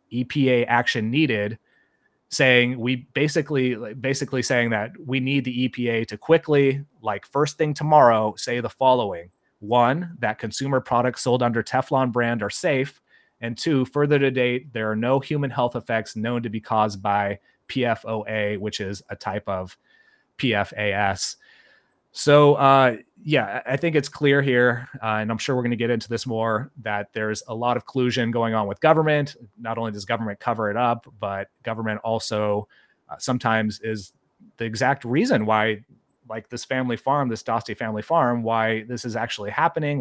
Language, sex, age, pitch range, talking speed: English, male, 30-49, 110-130 Hz, 170 wpm